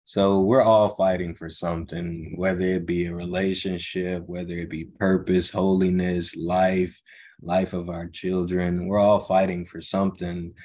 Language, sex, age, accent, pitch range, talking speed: English, male, 20-39, American, 85-95 Hz, 145 wpm